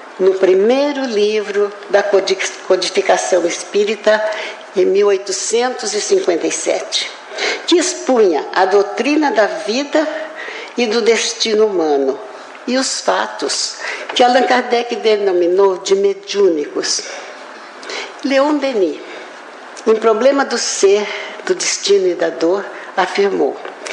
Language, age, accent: Portuguese, 60-79, Brazilian